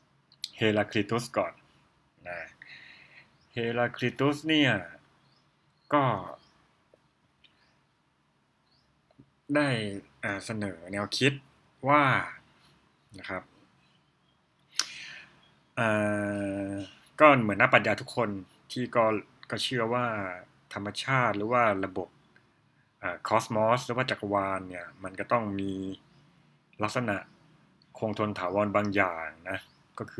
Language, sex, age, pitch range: Thai, male, 60-79, 100-125 Hz